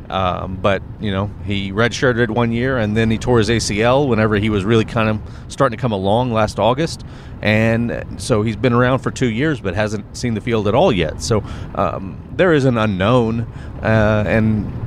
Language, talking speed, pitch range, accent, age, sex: English, 200 wpm, 100-120 Hz, American, 30-49, male